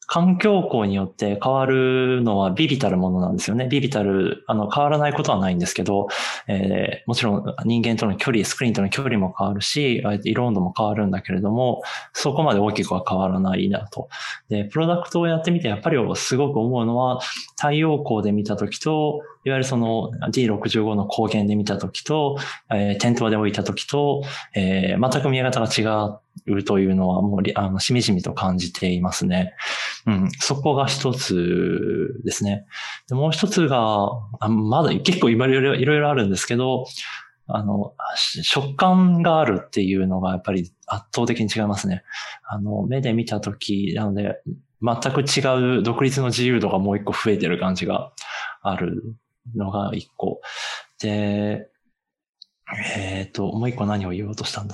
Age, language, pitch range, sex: 20-39, English, 100-130 Hz, male